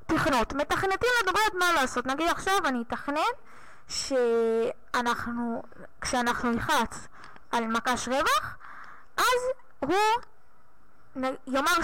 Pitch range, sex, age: 245-360 Hz, female, 20-39